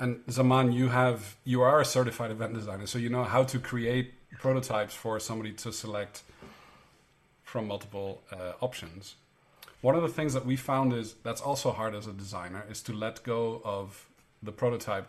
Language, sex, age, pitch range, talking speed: English, male, 40-59, 105-130 Hz, 185 wpm